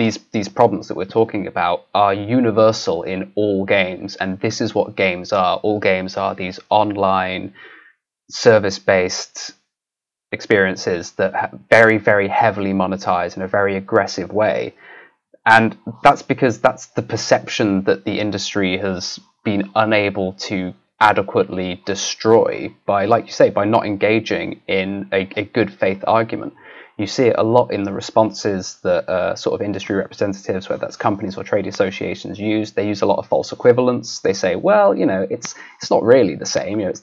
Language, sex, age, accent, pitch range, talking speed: English, male, 20-39, British, 95-115 Hz, 170 wpm